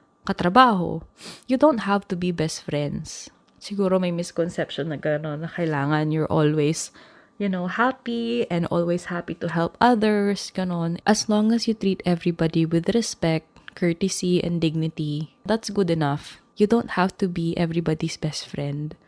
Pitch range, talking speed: 170-230 Hz, 155 wpm